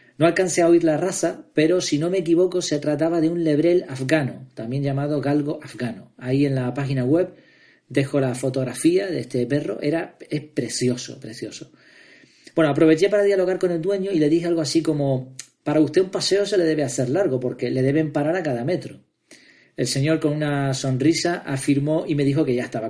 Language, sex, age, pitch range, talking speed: Spanish, male, 40-59, 135-175 Hz, 200 wpm